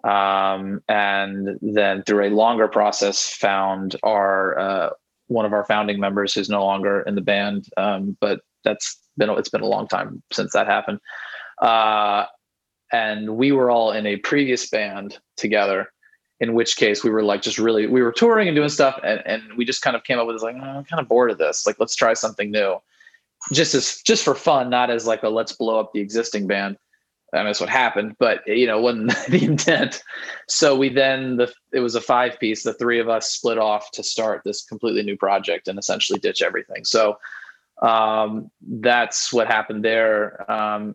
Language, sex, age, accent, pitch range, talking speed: English, male, 20-39, American, 105-125 Hz, 200 wpm